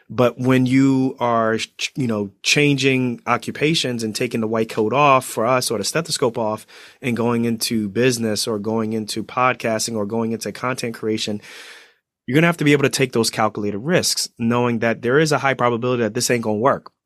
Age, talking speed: 30-49, 205 wpm